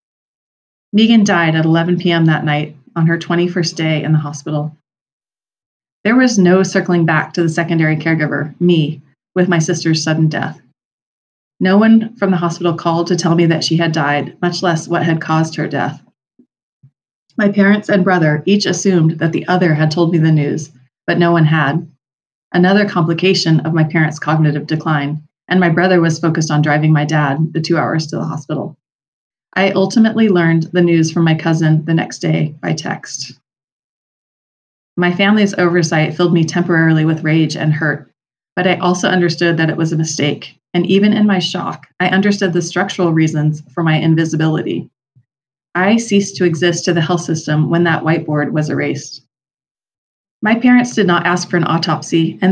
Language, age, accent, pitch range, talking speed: English, 30-49, American, 155-180 Hz, 180 wpm